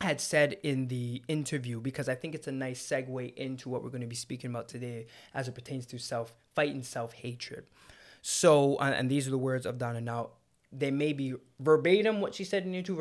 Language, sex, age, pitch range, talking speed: English, male, 20-39, 120-145 Hz, 210 wpm